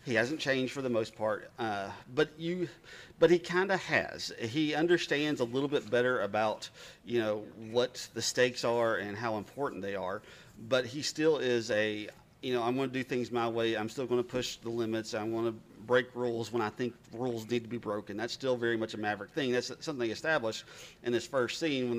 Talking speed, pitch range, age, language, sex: 225 wpm, 110-135 Hz, 40-59, English, male